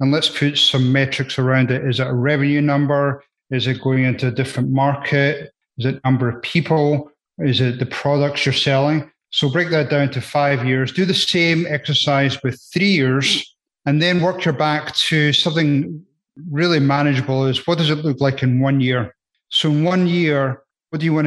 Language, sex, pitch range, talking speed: English, male, 135-155 Hz, 195 wpm